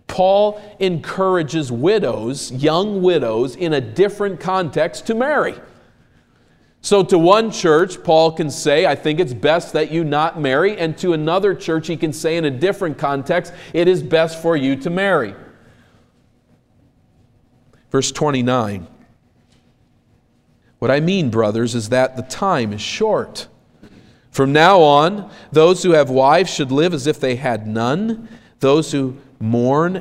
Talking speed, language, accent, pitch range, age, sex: 145 wpm, English, American, 120-165 Hz, 40-59, male